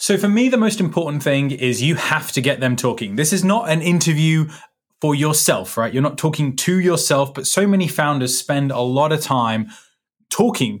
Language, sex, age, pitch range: English, male, 20-39, 120-150 Hz